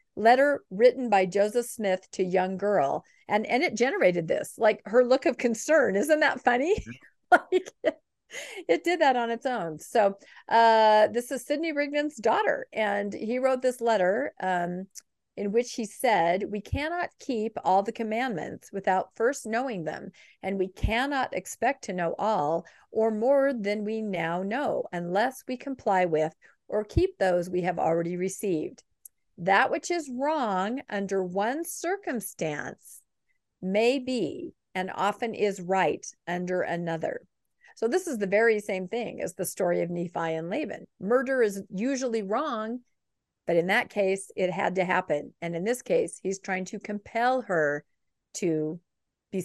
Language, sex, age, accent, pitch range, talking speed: English, female, 50-69, American, 185-250 Hz, 160 wpm